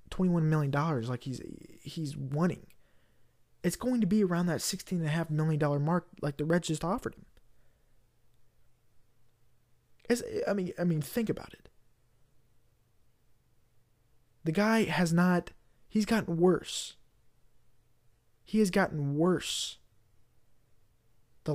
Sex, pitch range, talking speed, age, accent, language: male, 120-175 Hz, 120 wpm, 20-39, American, English